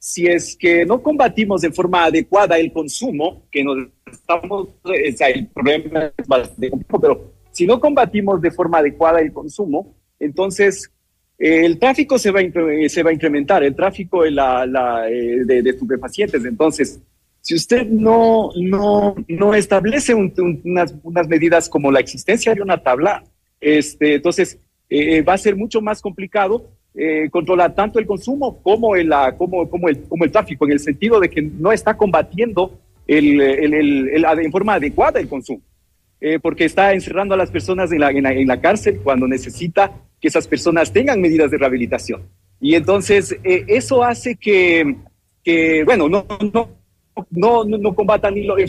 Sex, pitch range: male, 150-210 Hz